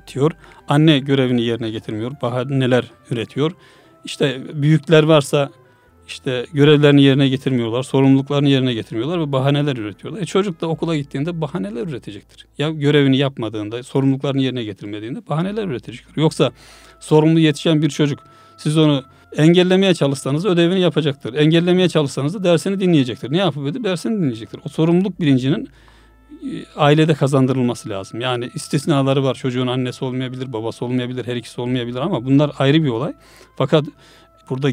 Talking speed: 135 wpm